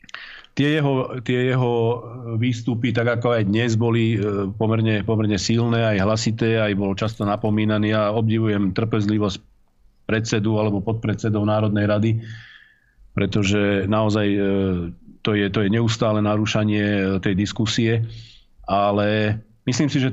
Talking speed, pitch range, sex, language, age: 125 wpm, 105-115 Hz, male, Slovak, 40-59